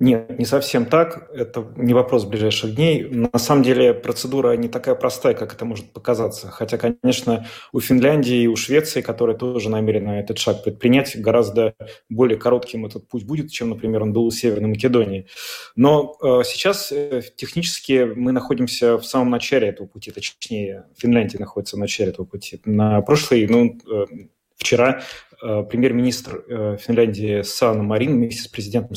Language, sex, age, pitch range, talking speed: Russian, male, 30-49, 110-130 Hz, 160 wpm